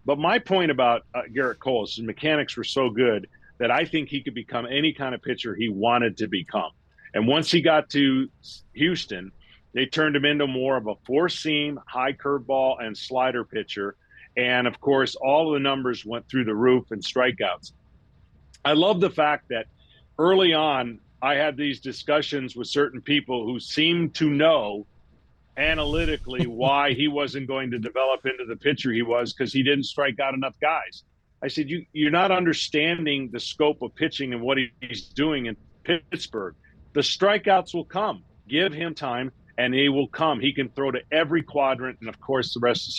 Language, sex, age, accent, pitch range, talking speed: English, male, 50-69, American, 125-155 Hz, 190 wpm